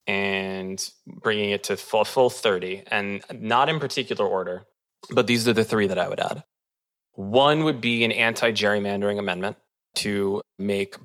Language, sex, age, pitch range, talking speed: English, male, 20-39, 100-125 Hz, 165 wpm